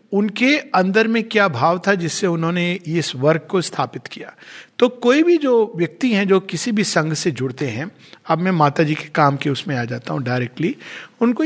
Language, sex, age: Hindi, male, 50-69